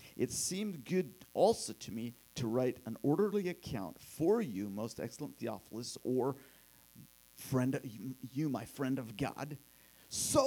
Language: English